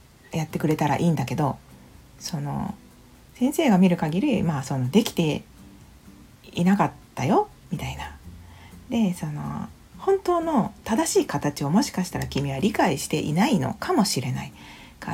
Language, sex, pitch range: Japanese, female, 145-220 Hz